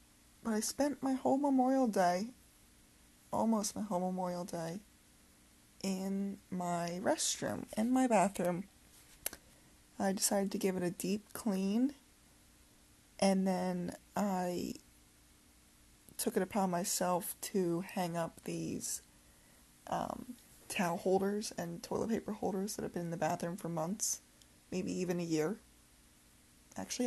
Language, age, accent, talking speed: English, 20-39, American, 125 wpm